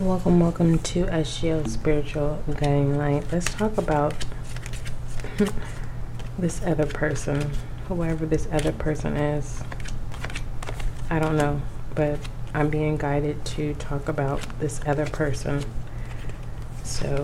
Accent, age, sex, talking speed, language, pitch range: American, 30-49, female, 110 wpm, English, 125-150 Hz